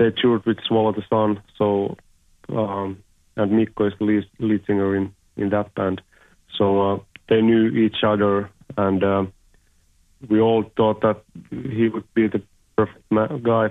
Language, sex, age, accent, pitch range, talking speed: English, male, 40-59, Finnish, 95-110 Hz, 160 wpm